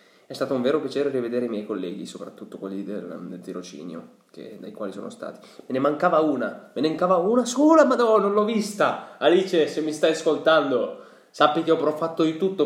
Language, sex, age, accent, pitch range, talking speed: Italian, male, 20-39, native, 125-190 Hz, 205 wpm